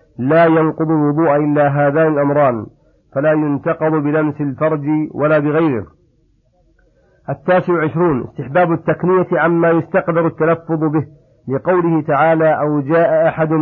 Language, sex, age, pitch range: Arabic, male, 50-69, 150-170 Hz